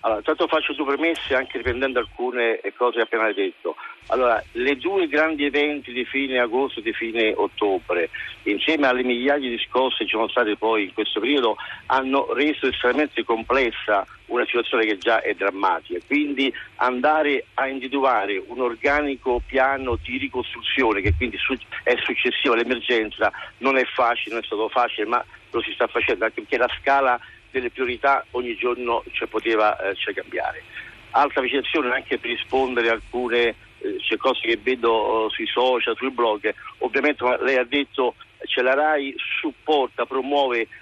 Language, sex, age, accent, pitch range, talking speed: Italian, male, 50-69, native, 115-150 Hz, 165 wpm